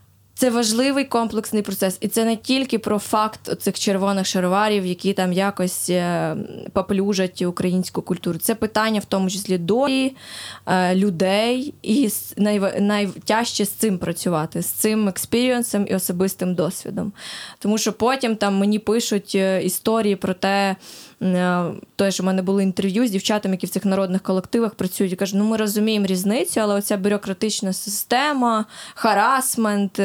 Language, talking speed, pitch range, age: Ukrainian, 140 wpm, 190-220 Hz, 20-39